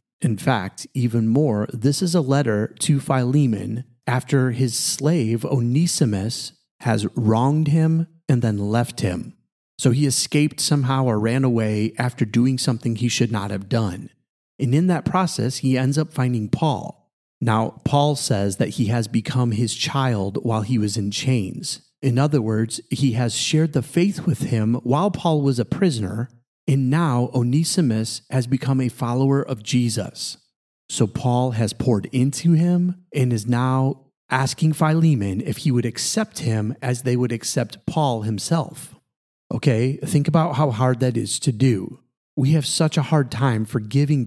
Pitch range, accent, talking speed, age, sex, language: 115-150 Hz, American, 165 wpm, 30-49, male, English